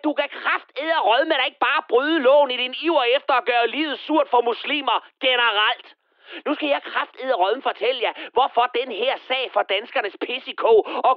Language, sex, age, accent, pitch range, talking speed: Danish, male, 30-49, native, 250-365 Hz, 190 wpm